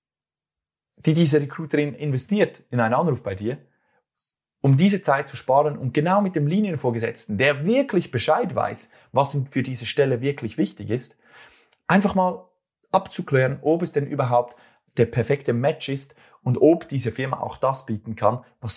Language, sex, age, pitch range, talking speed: German, male, 30-49, 115-150 Hz, 160 wpm